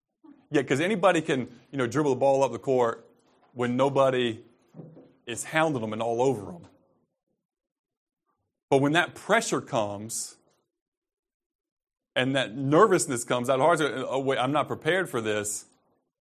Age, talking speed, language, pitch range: 30-49, 140 wpm, English, 115-140 Hz